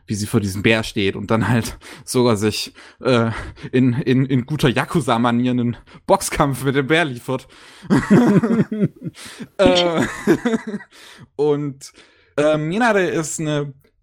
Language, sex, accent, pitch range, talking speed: German, male, German, 115-145 Hz, 130 wpm